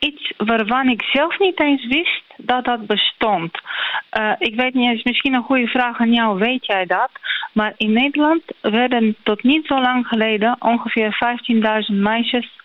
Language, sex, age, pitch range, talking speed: Dutch, female, 30-49, 205-240 Hz, 170 wpm